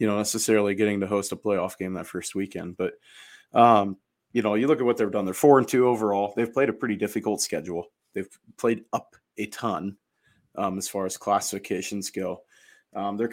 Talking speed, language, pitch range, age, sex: 200 wpm, English, 100-115 Hz, 20-39, male